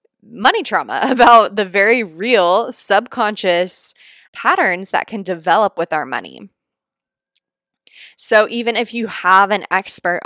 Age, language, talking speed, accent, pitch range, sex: 20-39, English, 125 wpm, American, 170-215 Hz, female